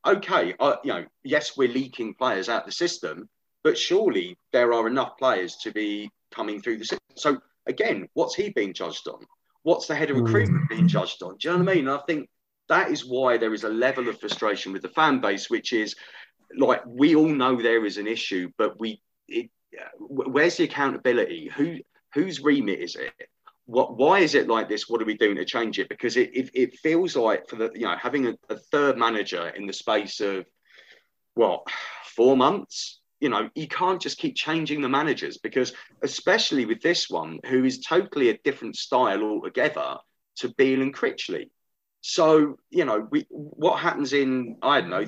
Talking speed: 200 wpm